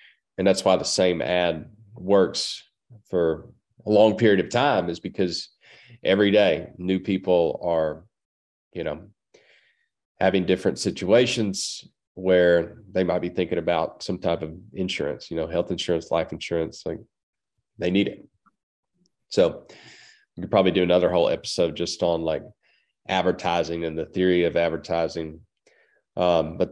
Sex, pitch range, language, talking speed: male, 90-105 Hz, English, 145 wpm